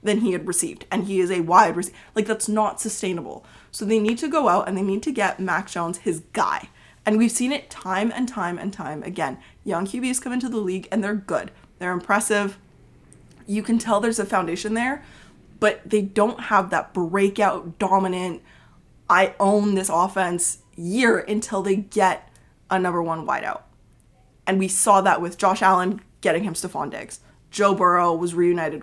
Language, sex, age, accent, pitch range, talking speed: English, female, 20-39, American, 180-215 Hz, 190 wpm